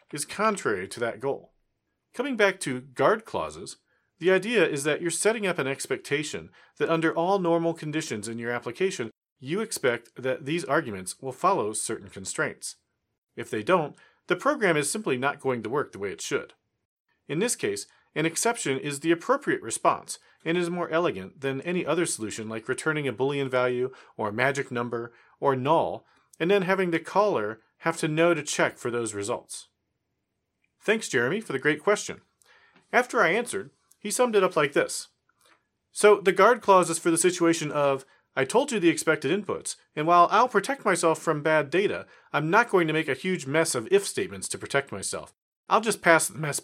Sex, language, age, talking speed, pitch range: male, English, 40-59, 190 wpm, 135-185 Hz